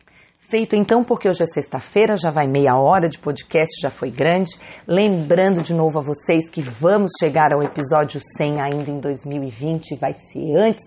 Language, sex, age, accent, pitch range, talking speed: Portuguese, female, 30-49, Brazilian, 150-185 Hz, 175 wpm